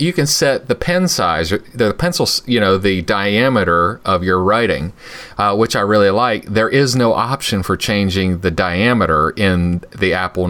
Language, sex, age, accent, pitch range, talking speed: English, male, 30-49, American, 90-120 Hz, 175 wpm